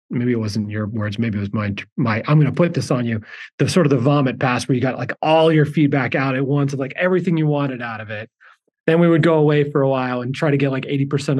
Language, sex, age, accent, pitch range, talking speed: English, male, 30-49, American, 120-150 Hz, 290 wpm